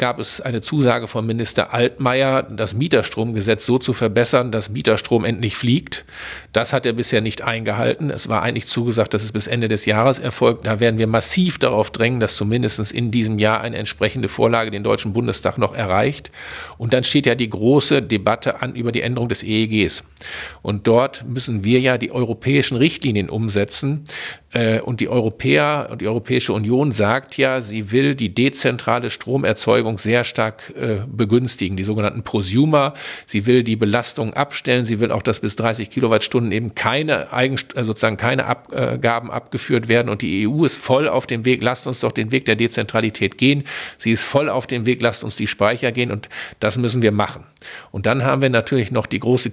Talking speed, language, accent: 185 wpm, German, German